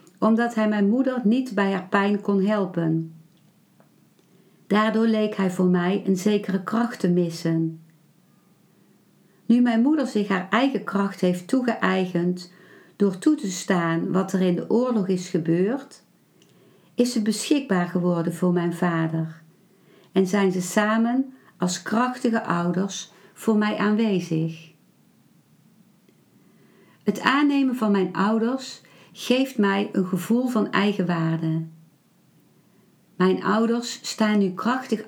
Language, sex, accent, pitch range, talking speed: Dutch, female, Dutch, 180-220 Hz, 125 wpm